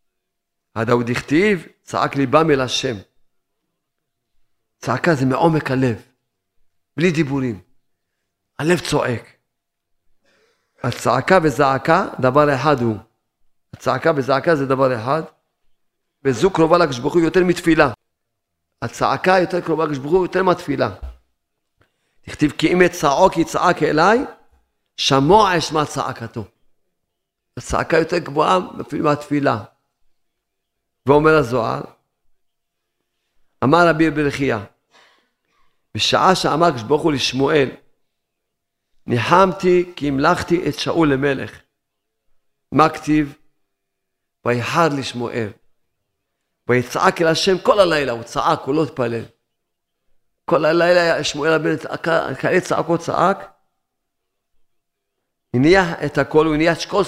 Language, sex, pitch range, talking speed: Hebrew, male, 120-160 Hz, 100 wpm